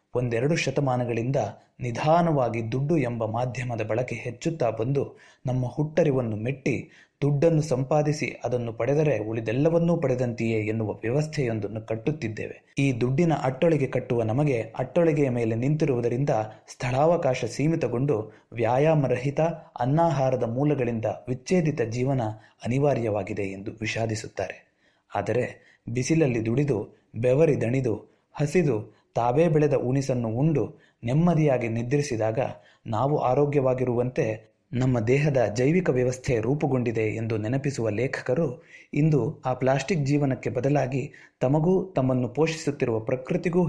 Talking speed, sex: 95 wpm, male